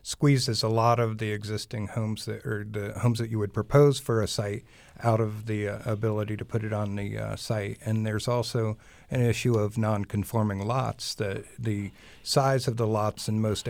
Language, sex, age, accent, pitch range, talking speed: English, male, 50-69, American, 105-120 Hz, 200 wpm